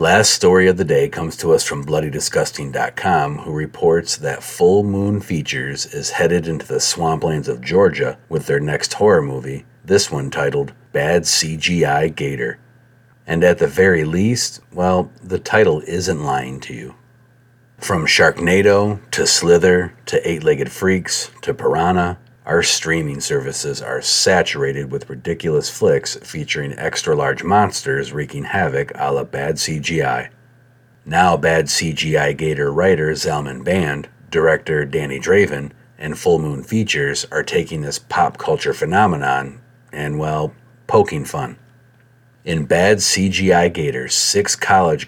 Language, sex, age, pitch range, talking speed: English, male, 40-59, 75-115 Hz, 135 wpm